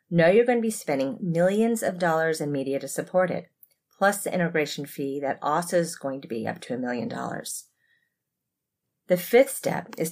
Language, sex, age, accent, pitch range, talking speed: English, female, 30-49, American, 150-185 Hz, 195 wpm